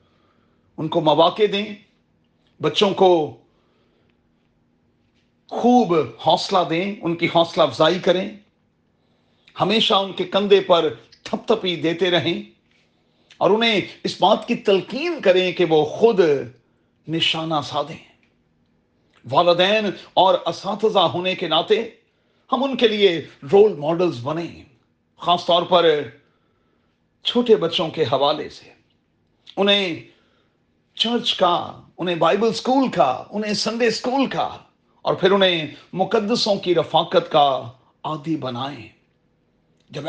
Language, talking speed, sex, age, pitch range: Urdu, 95 wpm, male, 40-59, 155-200 Hz